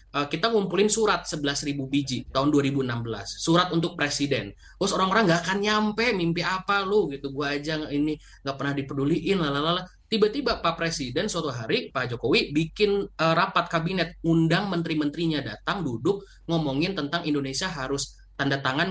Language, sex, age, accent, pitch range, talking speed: Indonesian, male, 20-39, native, 130-170 Hz, 145 wpm